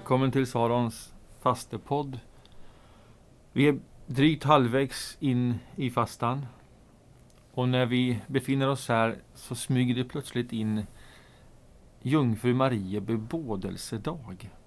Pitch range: 115-135 Hz